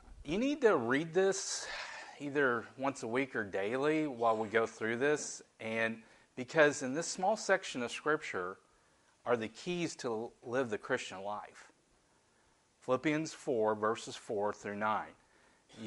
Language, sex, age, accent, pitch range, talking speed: English, male, 40-59, American, 110-135 Hz, 145 wpm